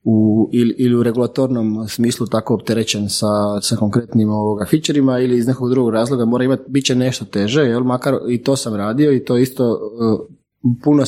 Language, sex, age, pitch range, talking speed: Croatian, male, 20-39, 110-130 Hz, 185 wpm